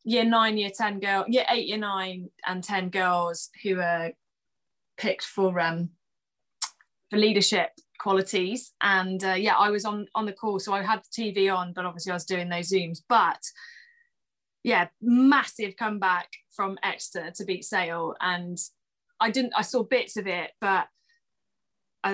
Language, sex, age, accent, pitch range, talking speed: English, female, 20-39, British, 185-220 Hz, 165 wpm